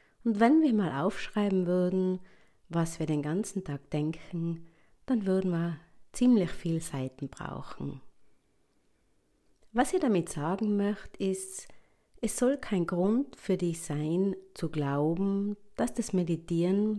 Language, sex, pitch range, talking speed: German, female, 150-205 Hz, 130 wpm